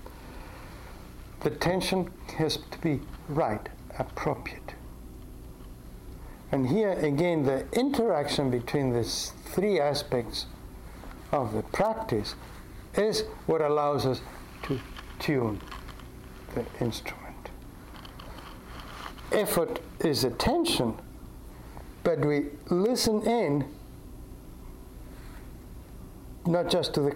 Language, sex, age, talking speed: English, male, 60-79, 85 wpm